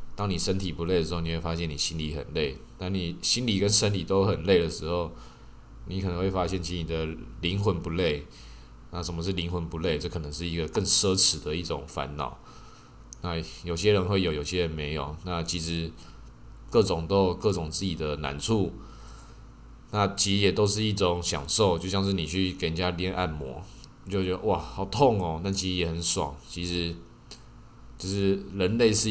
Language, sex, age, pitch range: Chinese, male, 20-39, 80-100 Hz